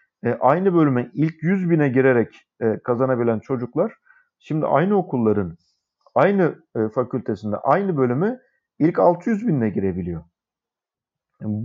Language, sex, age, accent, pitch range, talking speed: Turkish, male, 50-69, native, 125-185 Hz, 120 wpm